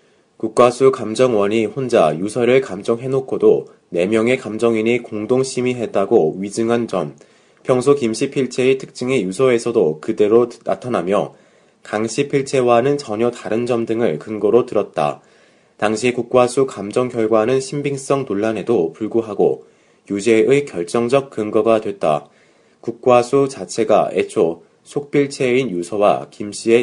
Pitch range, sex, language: 105-130 Hz, male, Korean